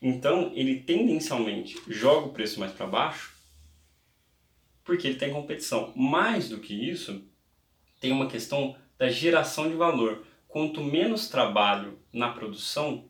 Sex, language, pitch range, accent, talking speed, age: male, Portuguese, 110-150 Hz, Brazilian, 140 wpm, 20-39